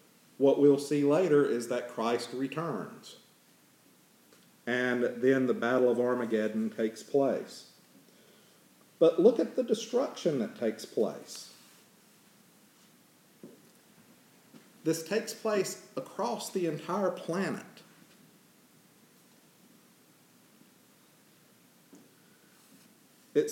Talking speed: 80 wpm